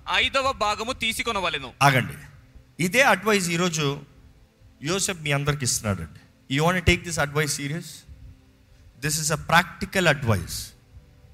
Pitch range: 130-210 Hz